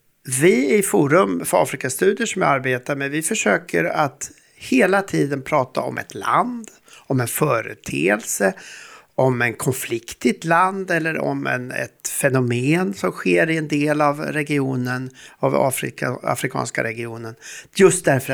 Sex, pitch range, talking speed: male, 120-175 Hz, 150 wpm